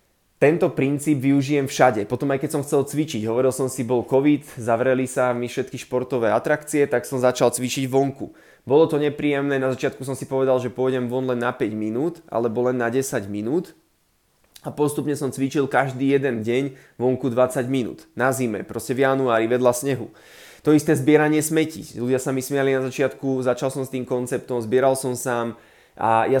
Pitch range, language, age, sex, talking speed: 125-145 Hz, Slovak, 20-39, male, 190 wpm